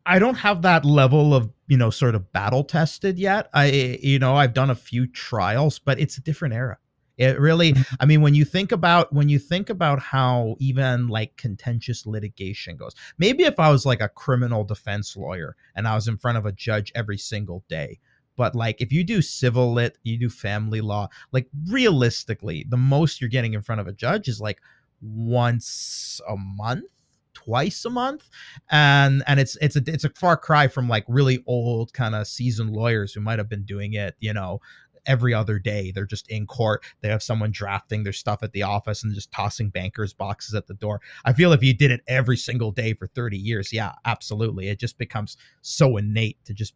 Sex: male